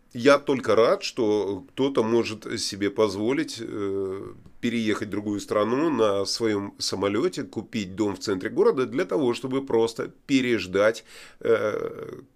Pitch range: 115-160 Hz